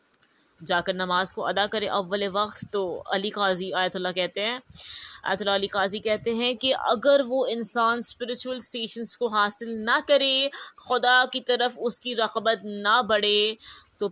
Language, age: Urdu, 20-39